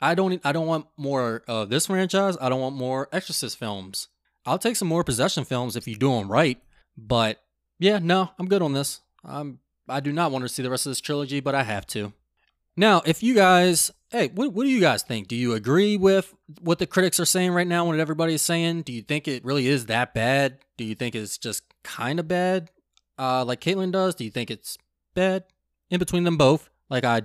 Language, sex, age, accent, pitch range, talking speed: English, male, 20-39, American, 125-175 Hz, 235 wpm